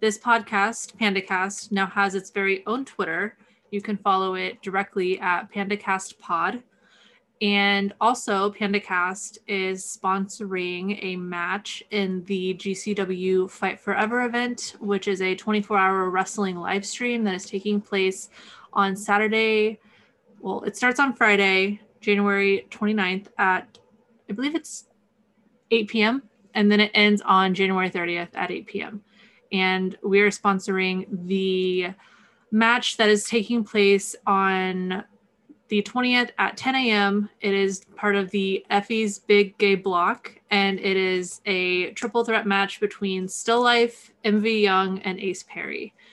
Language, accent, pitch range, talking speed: English, American, 190-215 Hz, 135 wpm